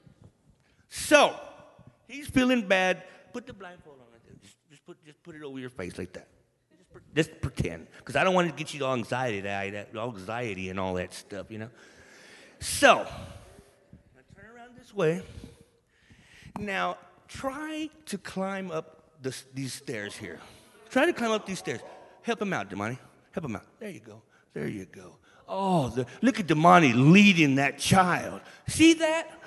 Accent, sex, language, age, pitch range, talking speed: American, male, English, 50-69, 135-205 Hz, 165 wpm